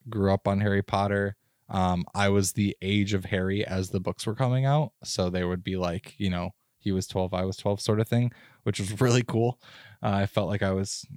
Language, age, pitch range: English, 20-39, 95-120 Hz